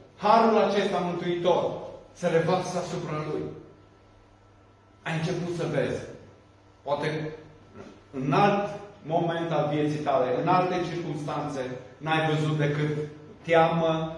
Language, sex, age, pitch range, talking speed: Romanian, male, 30-49, 140-185 Hz, 100 wpm